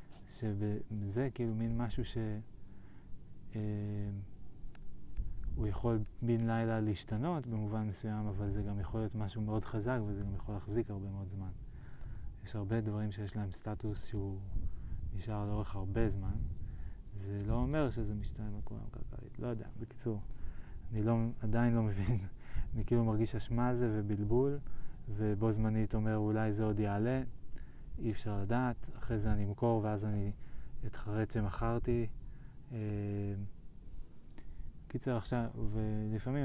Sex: male